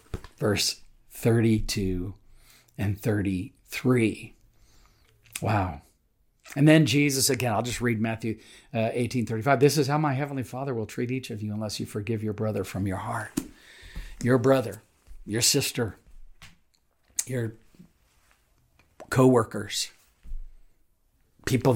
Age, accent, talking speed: 50-69, American, 115 wpm